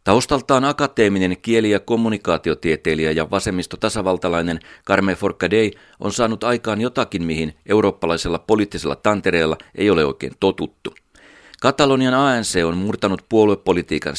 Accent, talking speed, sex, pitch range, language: native, 110 wpm, male, 90-110 Hz, Finnish